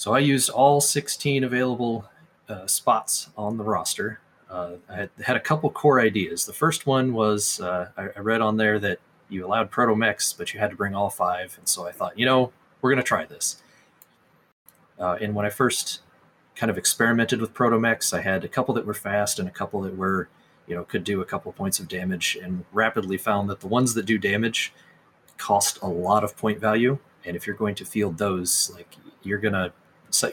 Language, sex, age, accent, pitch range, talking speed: English, male, 30-49, American, 95-115 Hz, 210 wpm